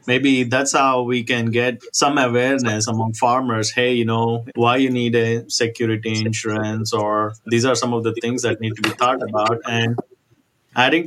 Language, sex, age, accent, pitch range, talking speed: English, male, 30-49, Indian, 115-130 Hz, 185 wpm